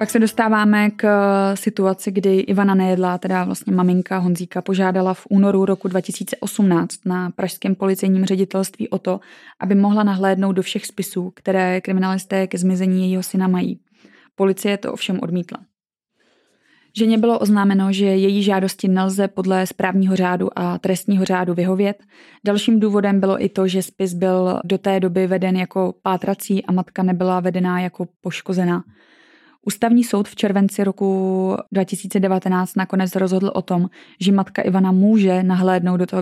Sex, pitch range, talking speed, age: female, 185-205 Hz, 150 wpm, 20-39